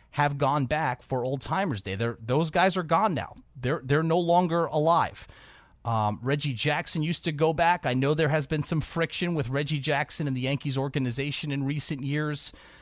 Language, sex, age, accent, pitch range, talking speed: English, male, 30-49, American, 145-220 Hz, 195 wpm